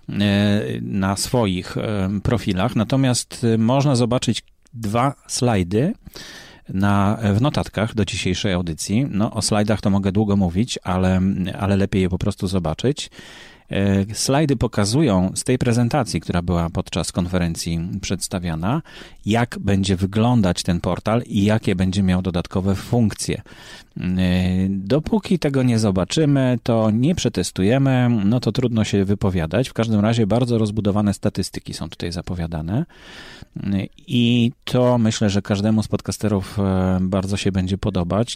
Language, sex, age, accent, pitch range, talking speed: Polish, male, 30-49, native, 95-120 Hz, 125 wpm